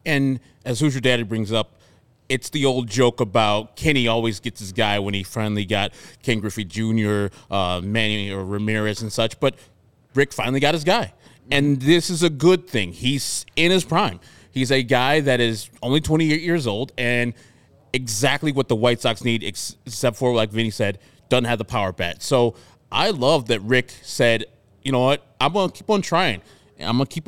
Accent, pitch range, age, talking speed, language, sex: American, 115-145 Hz, 20-39, 200 wpm, English, male